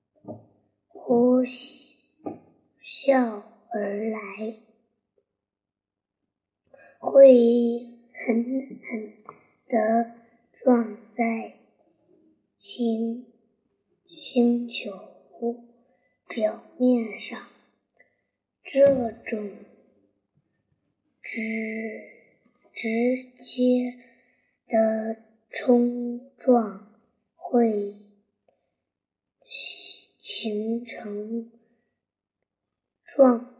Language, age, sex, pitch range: Chinese, 20-39, male, 225-250 Hz